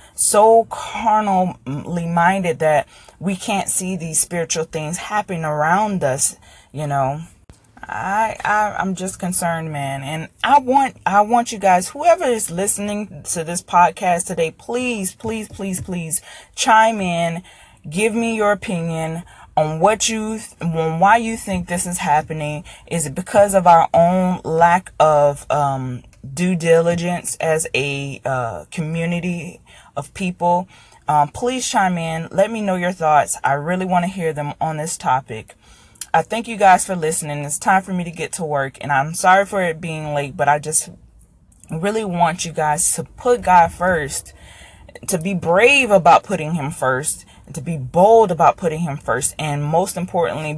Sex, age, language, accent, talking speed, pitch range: female, 20-39, English, American, 165 wpm, 155-190 Hz